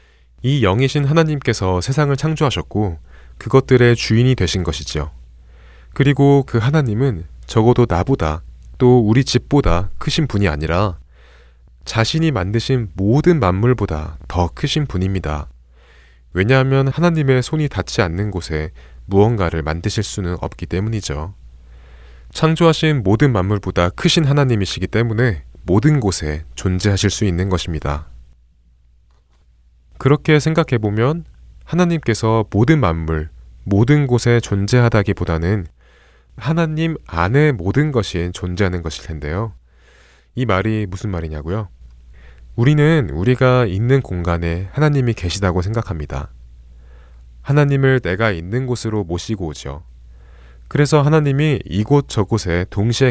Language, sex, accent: Korean, male, native